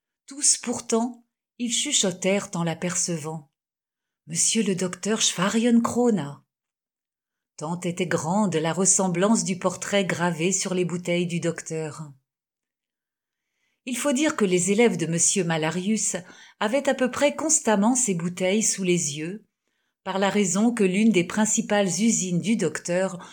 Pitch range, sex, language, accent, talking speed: 175-220 Hz, female, French, French, 135 wpm